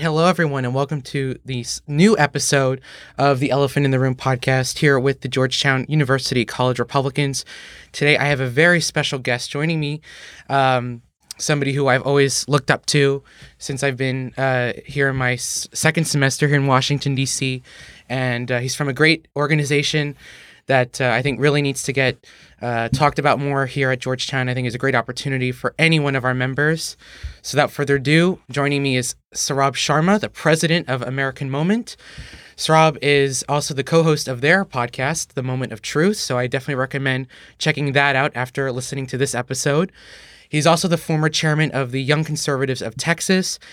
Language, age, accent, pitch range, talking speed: English, 20-39, American, 130-150 Hz, 185 wpm